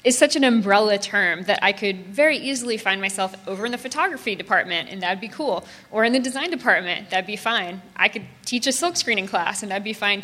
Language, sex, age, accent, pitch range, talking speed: English, female, 20-39, American, 185-230 Hz, 235 wpm